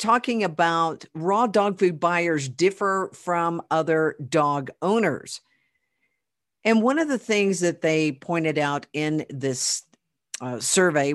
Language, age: English, 50-69